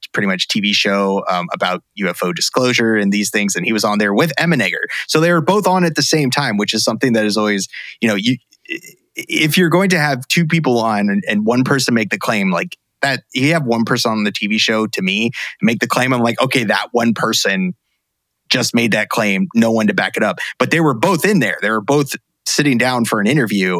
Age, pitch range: 30-49, 110-155 Hz